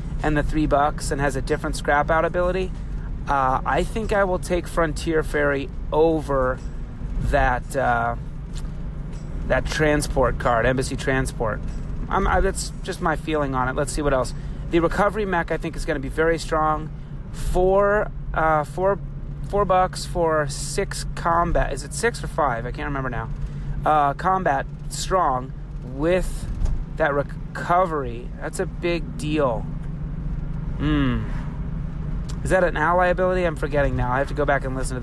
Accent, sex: American, male